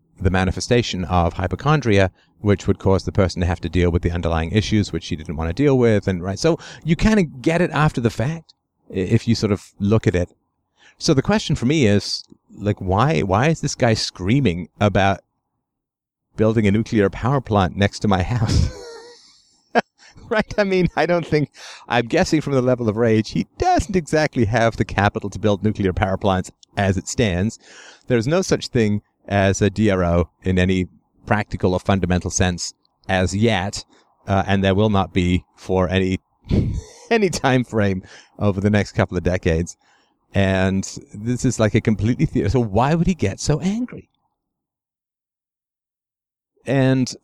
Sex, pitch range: male, 95-125 Hz